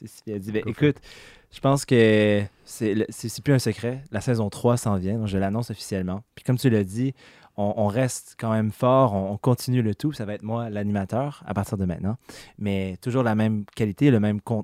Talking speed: 195 wpm